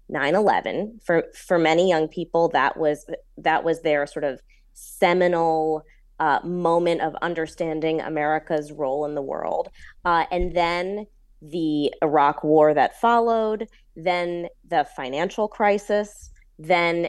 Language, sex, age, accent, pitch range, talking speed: English, female, 20-39, American, 155-195 Hz, 130 wpm